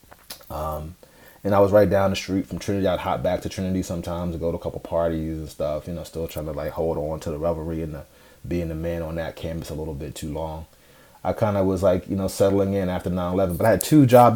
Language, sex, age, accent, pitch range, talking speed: English, male, 30-49, American, 80-95 Hz, 270 wpm